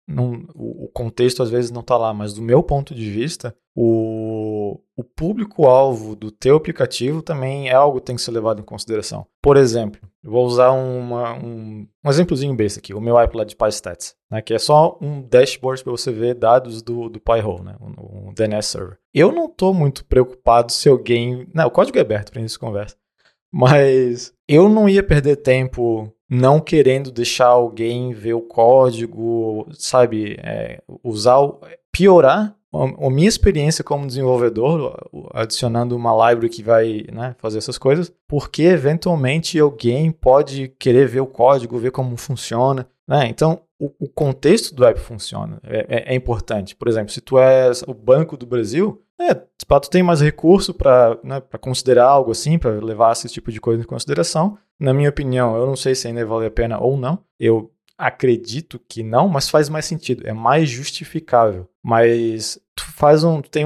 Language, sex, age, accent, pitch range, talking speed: Portuguese, male, 20-39, Brazilian, 115-145 Hz, 175 wpm